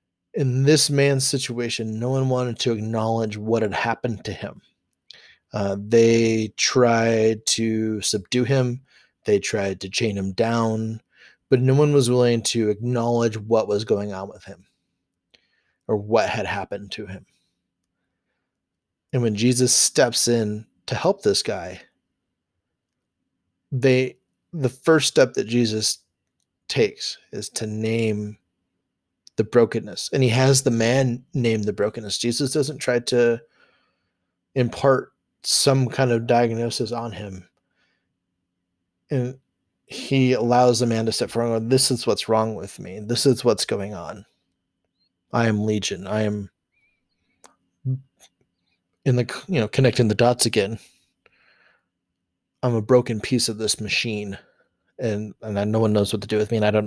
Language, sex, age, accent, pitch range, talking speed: English, male, 30-49, American, 100-125 Hz, 145 wpm